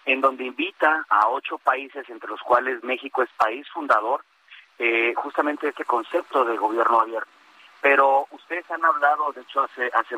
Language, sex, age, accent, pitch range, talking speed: Spanish, male, 40-59, Mexican, 115-150 Hz, 165 wpm